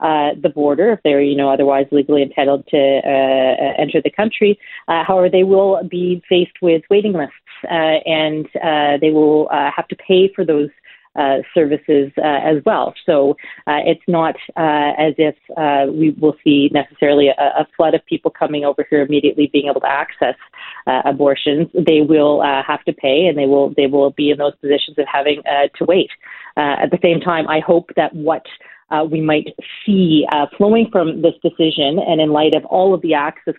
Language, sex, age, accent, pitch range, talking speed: English, female, 40-59, American, 140-165 Hz, 200 wpm